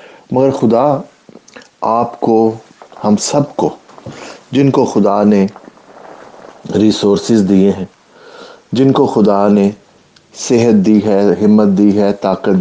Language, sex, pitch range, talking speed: English, male, 95-115 Hz, 120 wpm